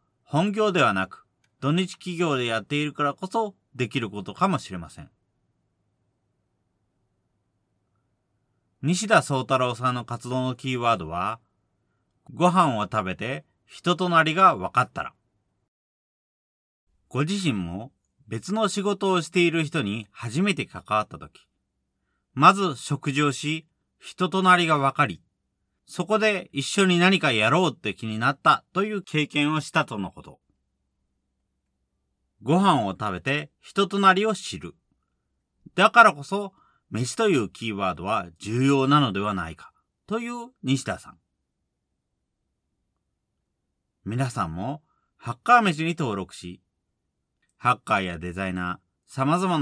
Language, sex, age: Japanese, male, 40-59